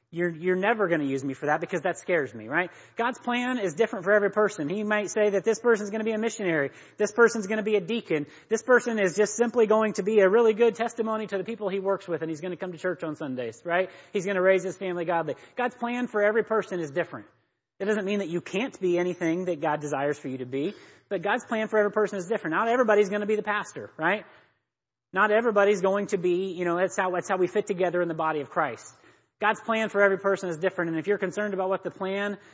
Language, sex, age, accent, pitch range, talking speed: English, male, 30-49, American, 155-210 Hz, 270 wpm